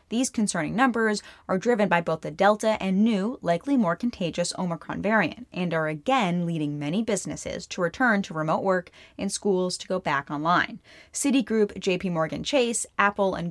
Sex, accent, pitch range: female, American, 175-225 Hz